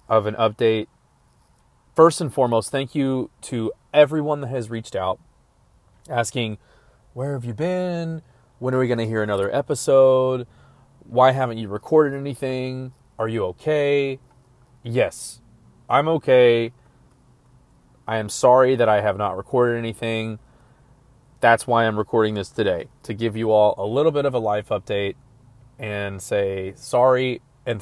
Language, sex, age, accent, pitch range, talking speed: English, male, 30-49, American, 105-125 Hz, 145 wpm